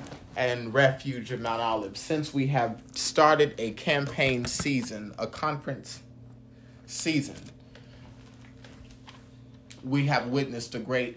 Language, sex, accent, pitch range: English, male, American, 120-125 Hz